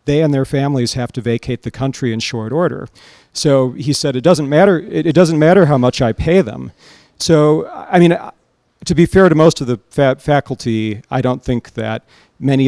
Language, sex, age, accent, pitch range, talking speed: English, male, 40-59, American, 115-135 Hz, 205 wpm